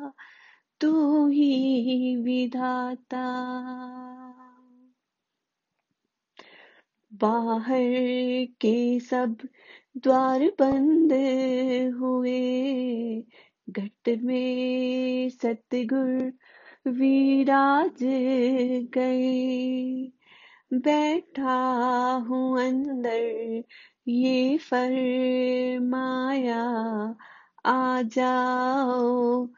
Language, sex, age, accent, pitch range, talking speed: Hindi, female, 30-49, native, 255-280 Hz, 45 wpm